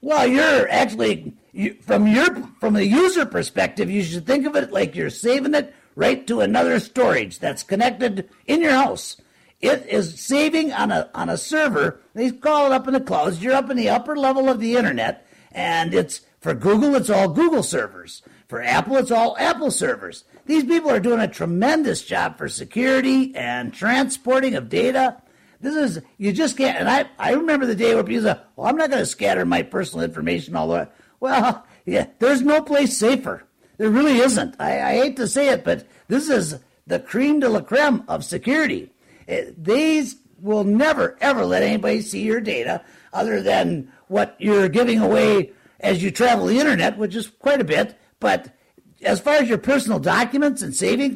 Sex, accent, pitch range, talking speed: male, American, 220-280 Hz, 195 wpm